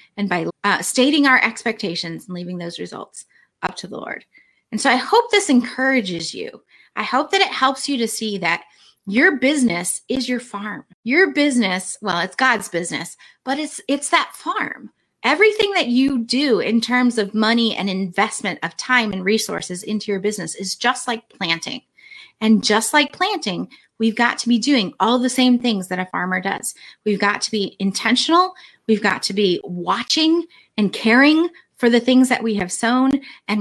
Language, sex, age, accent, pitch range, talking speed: English, female, 30-49, American, 195-255 Hz, 185 wpm